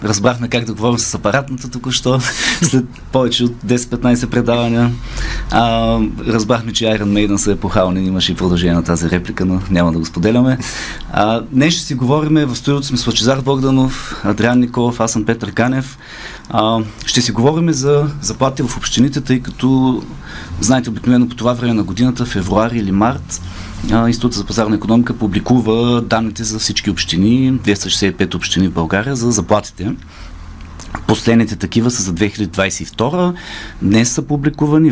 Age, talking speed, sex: 30-49, 150 wpm, male